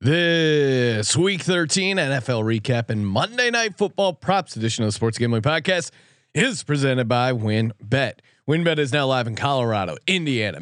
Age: 30-49